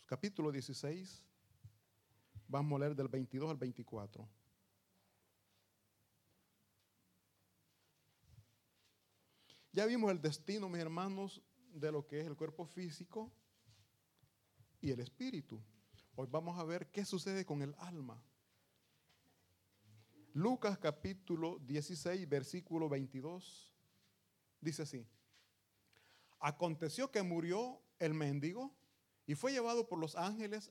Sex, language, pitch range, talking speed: male, Italian, 115-190 Hz, 100 wpm